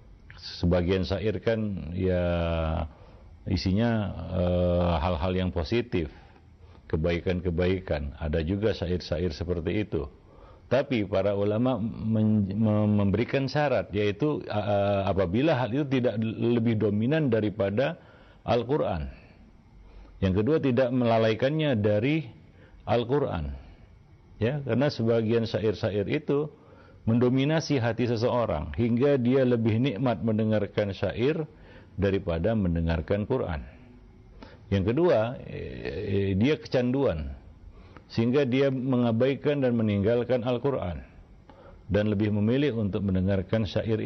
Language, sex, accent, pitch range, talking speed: Indonesian, male, native, 95-120 Hz, 95 wpm